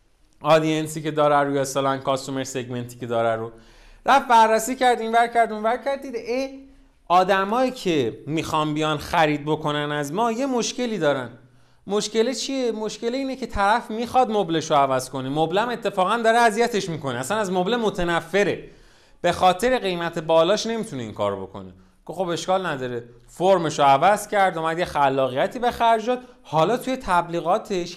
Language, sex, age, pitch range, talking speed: Persian, male, 30-49, 135-215 Hz, 160 wpm